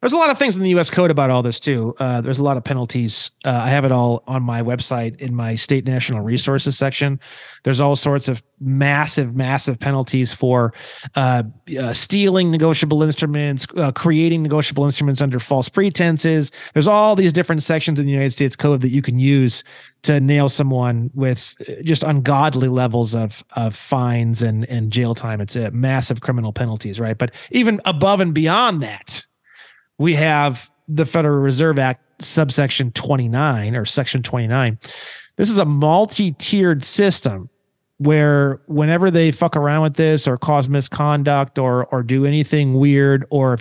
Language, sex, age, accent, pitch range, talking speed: English, male, 30-49, American, 125-155 Hz, 175 wpm